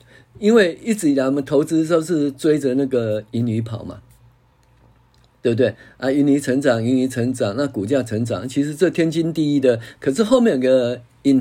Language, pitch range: Chinese, 120-150 Hz